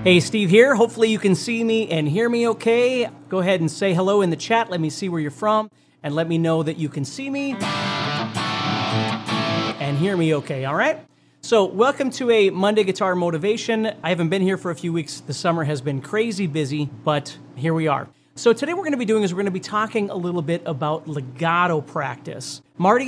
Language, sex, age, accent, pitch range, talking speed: English, male, 30-49, American, 160-220 Hz, 225 wpm